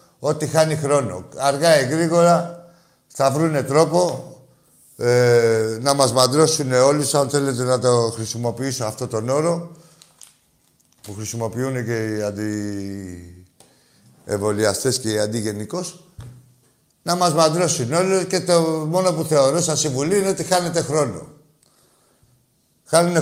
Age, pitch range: 60-79, 130-185 Hz